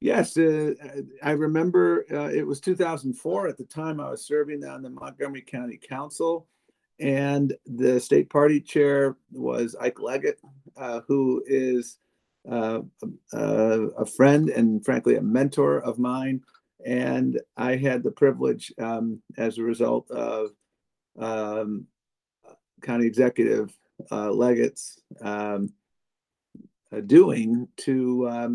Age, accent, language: 50-69, American, English